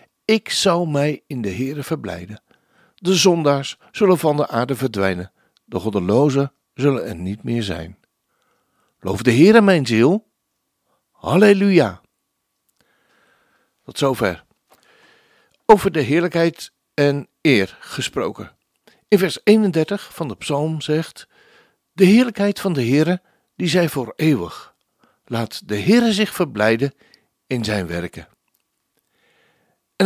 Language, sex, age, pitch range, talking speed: Dutch, male, 60-79, 115-190 Hz, 120 wpm